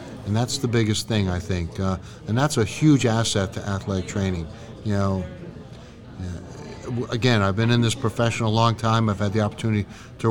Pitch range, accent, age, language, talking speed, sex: 100-115 Hz, American, 50-69, English, 185 wpm, male